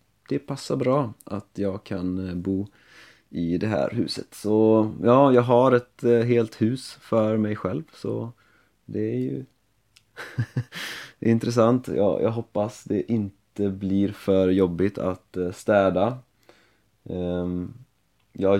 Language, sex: Swedish, male